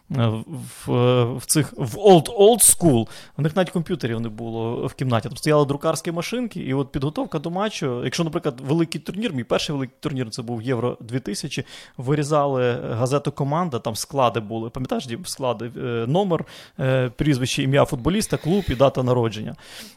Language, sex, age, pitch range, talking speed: Ukrainian, male, 20-39, 120-150 Hz, 155 wpm